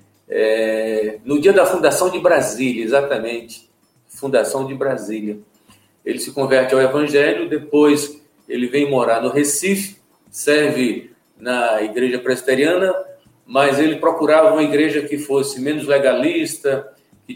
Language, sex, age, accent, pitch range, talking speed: Portuguese, male, 50-69, Brazilian, 125-155 Hz, 120 wpm